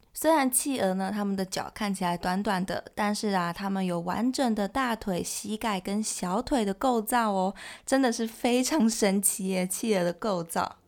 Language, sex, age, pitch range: Chinese, female, 20-39, 195-255 Hz